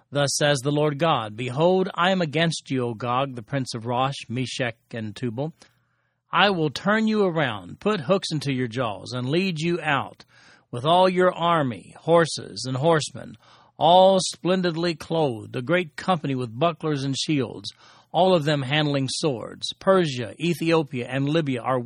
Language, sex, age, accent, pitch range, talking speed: English, male, 40-59, American, 125-165 Hz, 165 wpm